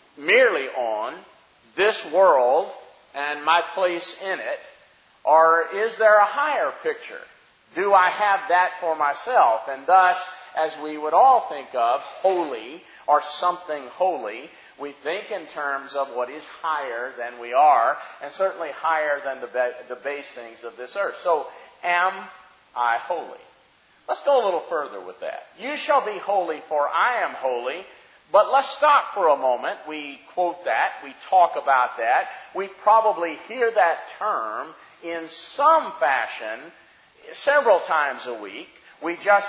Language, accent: English, American